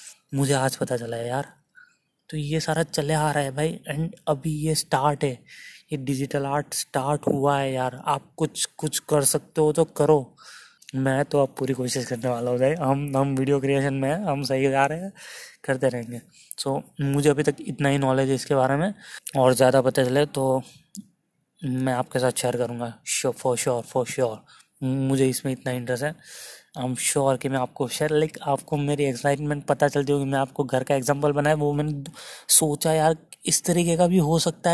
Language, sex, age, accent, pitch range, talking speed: Hindi, male, 20-39, native, 130-155 Hz, 200 wpm